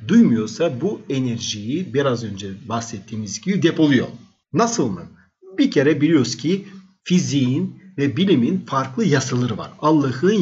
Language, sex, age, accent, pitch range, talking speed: Turkish, male, 50-69, native, 130-185 Hz, 120 wpm